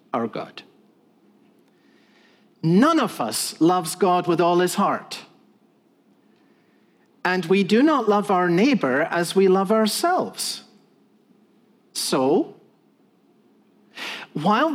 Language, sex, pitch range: English, male, 180-245 Hz